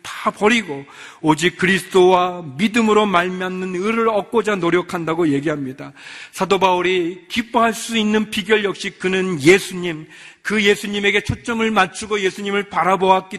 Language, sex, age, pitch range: Korean, male, 40-59, 190-230 Hz